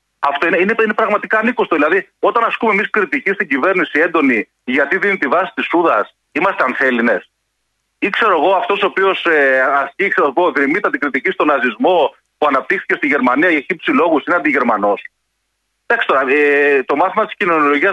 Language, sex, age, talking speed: Greek, male, 40-59, 175 wpm